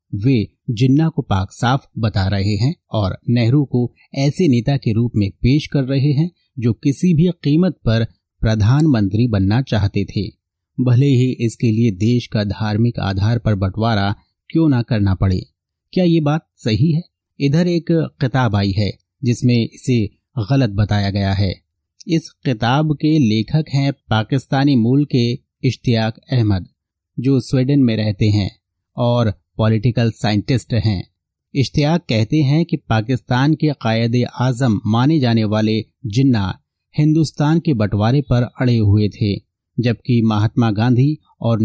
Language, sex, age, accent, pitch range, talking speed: Hindi, male, 30-49, native, 110-140 Hz, 145 wpm